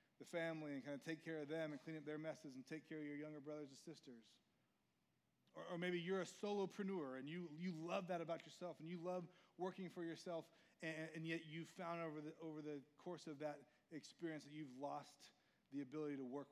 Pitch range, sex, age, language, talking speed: 155-190 Hz, male, 30-49, English, 230 wpm